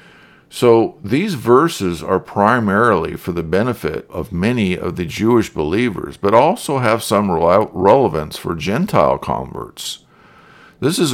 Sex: male